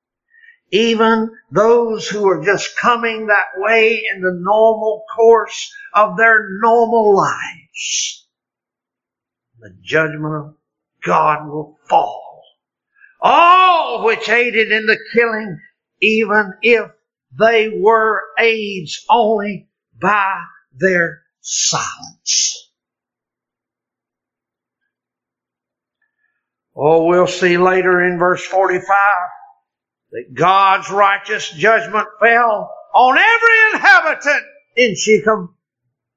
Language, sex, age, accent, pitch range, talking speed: English, male, 60-79, American, 185-305 Hz, 90 wpm